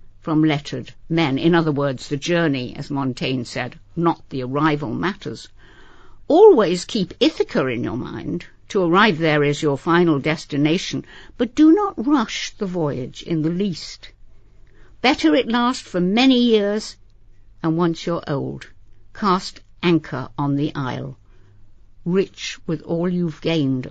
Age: 60-79